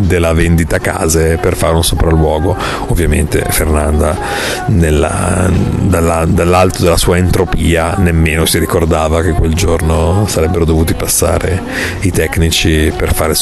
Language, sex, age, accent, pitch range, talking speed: Italian, male, 40-59, native, 80-95 Hz, 120 wpm